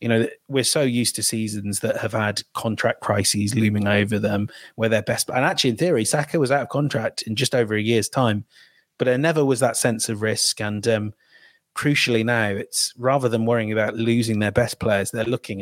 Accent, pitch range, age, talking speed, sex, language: British, 115-150 Hz, 30-49, 215 wpm, male, English